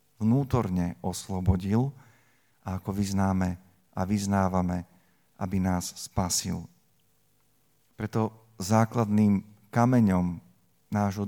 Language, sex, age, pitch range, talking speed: Slovak, male, 40-59, 95-110 Hz, 75 wpm